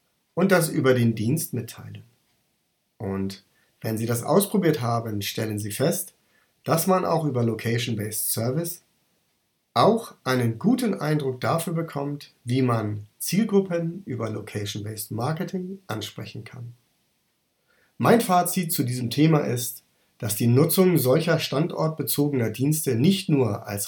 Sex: male